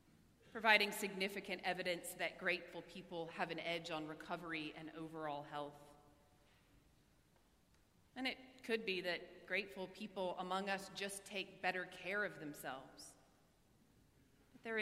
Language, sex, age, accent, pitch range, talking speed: English, female, 30-49, American, 165-195 Hz, 120 wpm